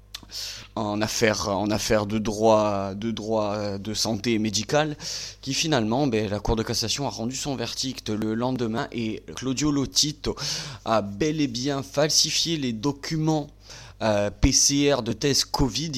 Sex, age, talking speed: male, 20-39, 145 wpm